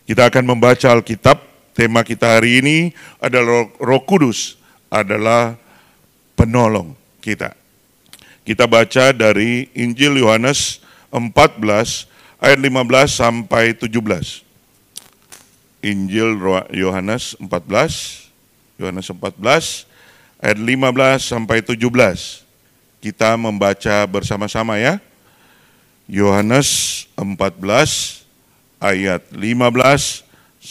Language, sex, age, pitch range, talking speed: Indonesian, male, 50-69, 105-130 Hz, 80 wpm